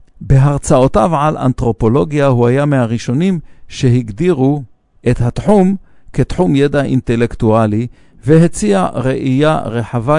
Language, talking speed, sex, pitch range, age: English, 90 wpm, male, 120-155 Hz, 50-69